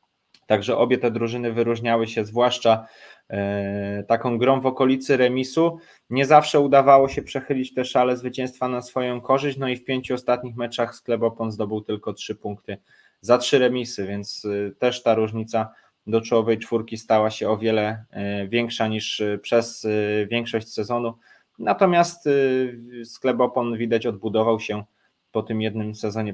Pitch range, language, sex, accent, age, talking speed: 110-125 Hz, Polish, male, native, 20-39, 140 wpm